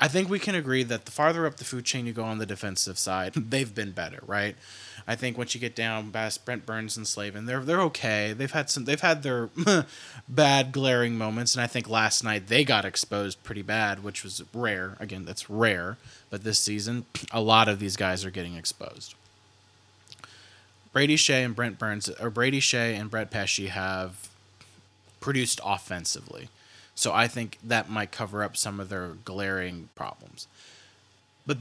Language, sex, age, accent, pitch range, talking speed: English, male, 20-39, American, 100-125 Hz, 190 wpm